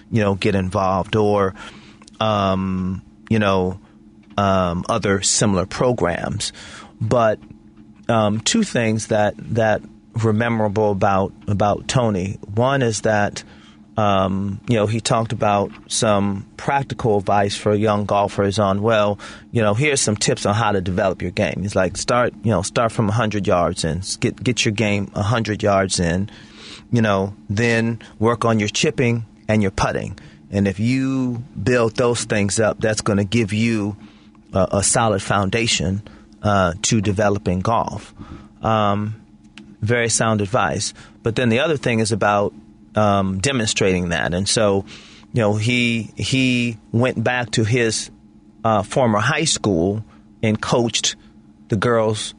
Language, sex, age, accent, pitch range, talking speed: English, male, 30-49, American, 100-115 Hz, 150 wpm